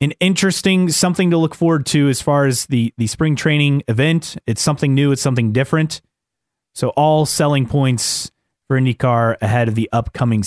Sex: male